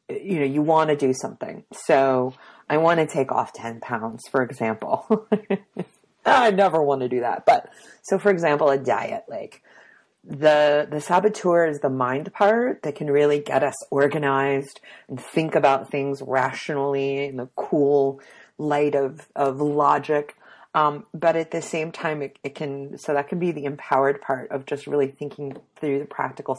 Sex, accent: female, American